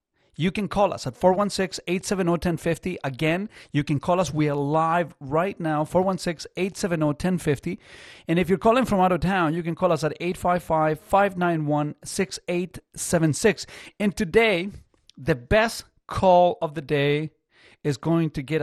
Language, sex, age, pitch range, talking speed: English, male, 40-59, 145-180 Hz, 160 wpm